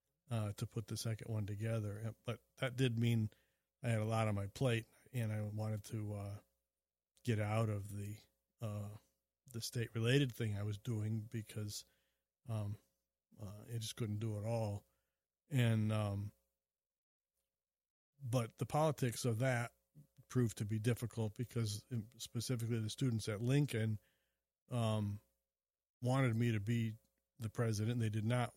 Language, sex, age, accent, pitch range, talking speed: English, male, 50-69, American, 105-125 Hz, 145 wpm